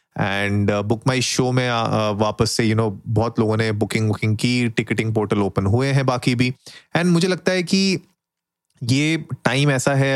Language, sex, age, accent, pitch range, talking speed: Hindi, male, 30-49, native, 110-140 Hz, 185 wpm